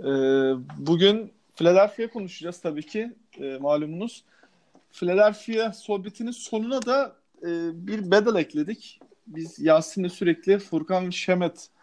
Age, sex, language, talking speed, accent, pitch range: 40-59, male, Turkish, 90 wpm, native, 165-225 Hz